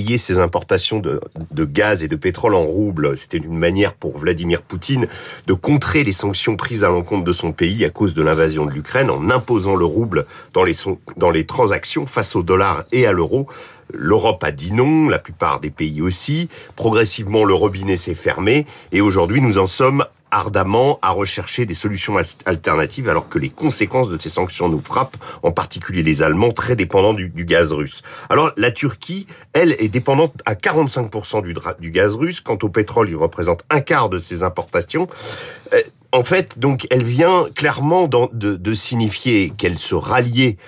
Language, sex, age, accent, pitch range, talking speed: French, male, 40-59, French, 100-150 Hz, 185 wpm